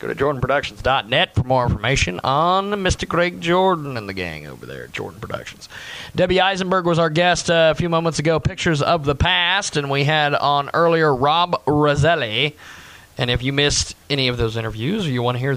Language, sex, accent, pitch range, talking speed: English, male, American, 125-160 Hz, 195 wpm